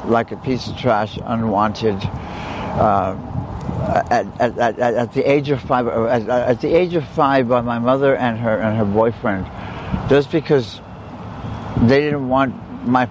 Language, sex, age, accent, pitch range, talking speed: English, male, 60-79, American, 115-145 Hz, 160 wpm